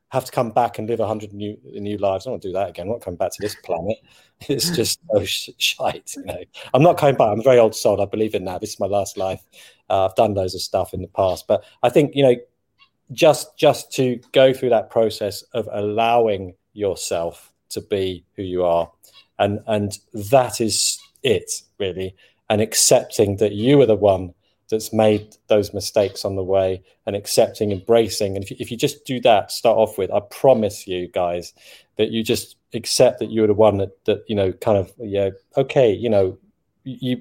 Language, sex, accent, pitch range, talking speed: English, male, British, 100-120 Hz, 215 wpm